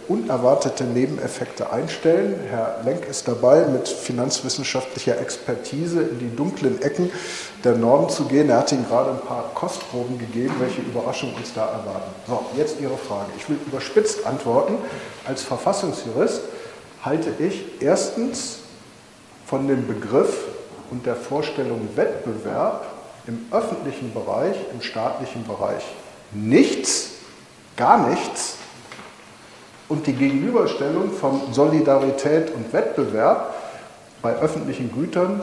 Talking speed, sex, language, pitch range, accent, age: 120 wpm, male, German, 120-160 Hz, German, 50-69